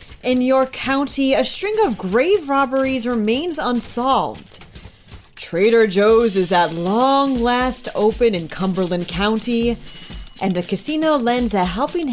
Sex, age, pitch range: female, 30-49, 185-260 Hz